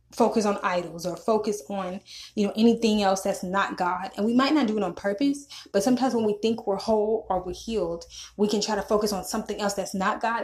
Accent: American